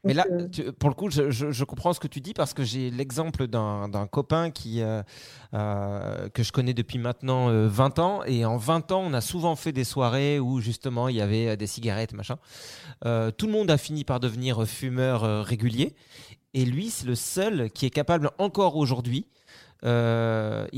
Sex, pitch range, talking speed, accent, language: male, 120-155 Hz, 200 wpm, French, French